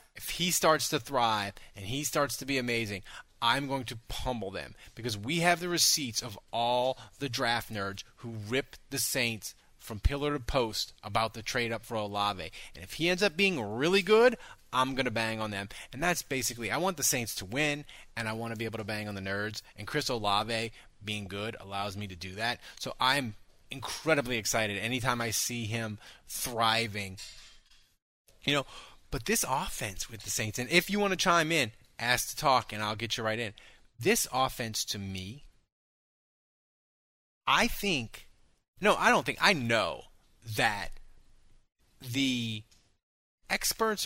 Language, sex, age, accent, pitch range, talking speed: English, male, 30-49, American, 105-135 Hz, 180 wpm